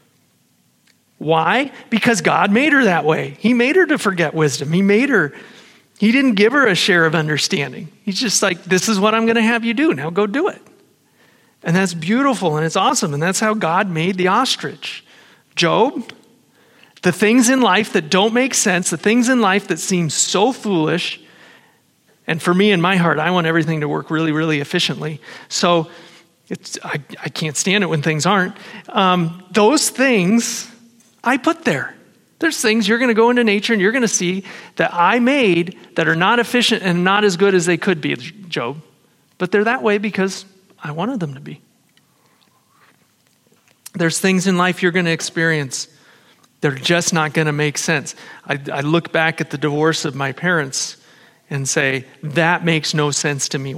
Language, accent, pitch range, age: English, American, 160-220 Hz, 40-59